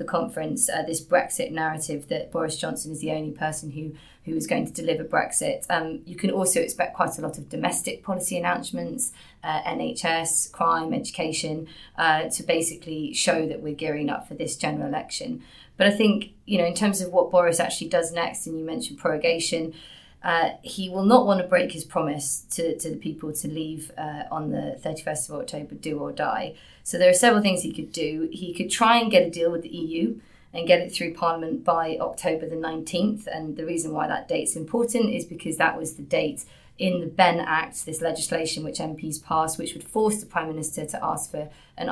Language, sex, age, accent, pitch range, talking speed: English, female, 20-39, British, 160-190 Hz, 210 wpm